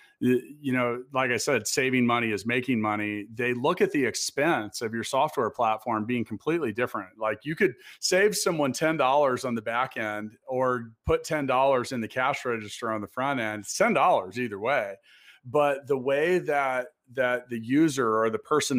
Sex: male